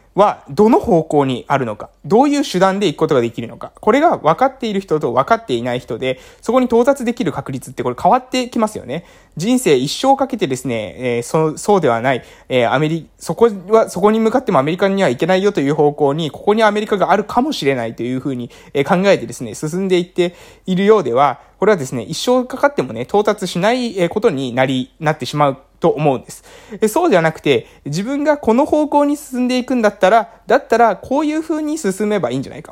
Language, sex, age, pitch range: Japanese, male, 20-39, 155-245 Hz